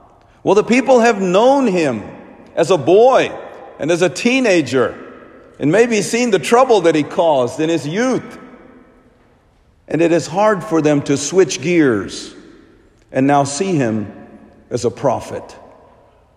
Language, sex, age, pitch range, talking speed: English, male, 50-69, 110-175 Hz, 145 wpm